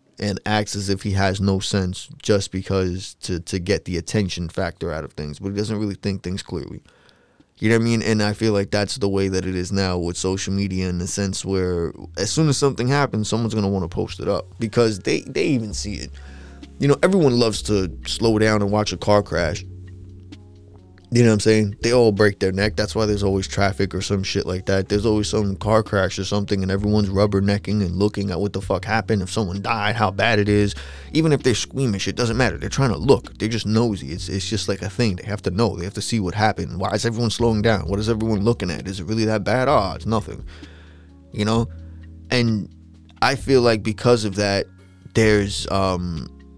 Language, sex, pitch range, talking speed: English, male, 95-110 Hz, 235 wpm